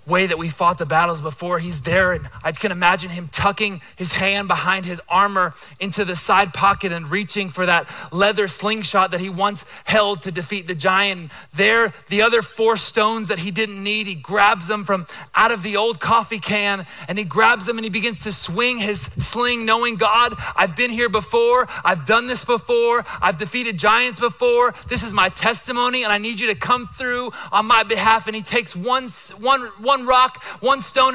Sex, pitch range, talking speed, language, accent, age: male, 180-225 Hz, 200 wpm, English, American, 30-49